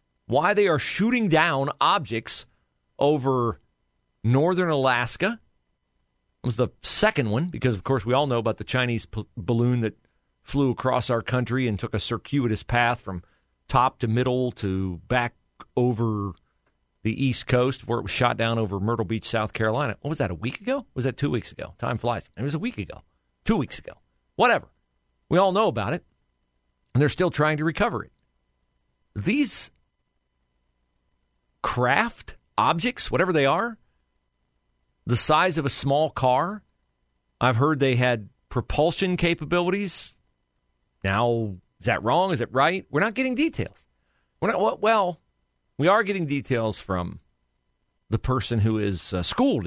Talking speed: 155 wpm